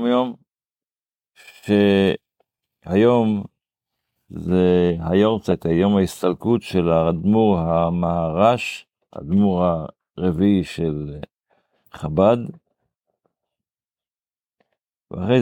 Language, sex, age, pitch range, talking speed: Hebrew, male, 50-69, 85-105 Hz, 70 wpm